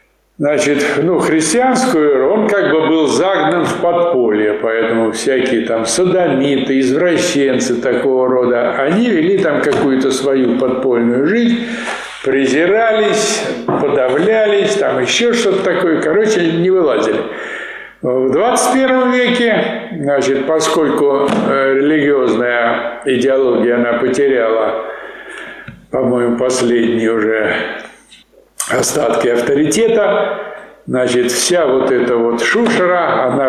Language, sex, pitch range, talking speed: Russian, male, 125-210 Hz, 95 wpm